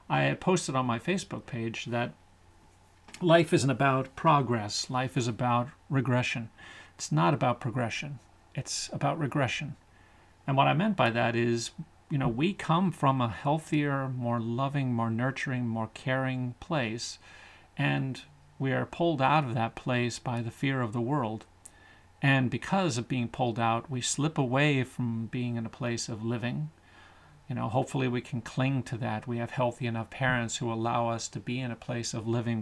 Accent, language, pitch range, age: American, English, 110-130 Hz, 40-59